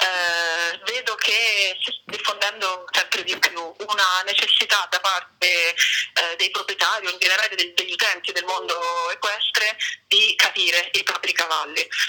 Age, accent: 30-49, native